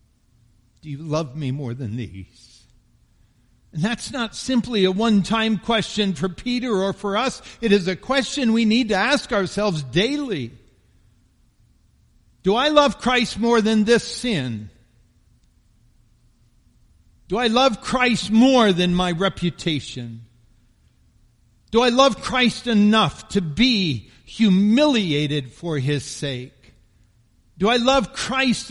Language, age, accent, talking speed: English, 50-69, American, 125 wpm